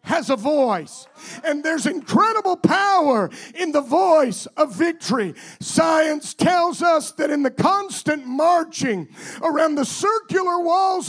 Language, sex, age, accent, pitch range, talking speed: English, male, 50-69, American, 280-345 Hz, 130 wpm